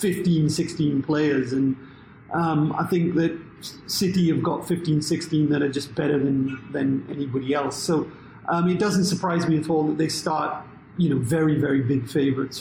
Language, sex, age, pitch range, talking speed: English, male, 30-49, 150-180 Hz, 180 wpm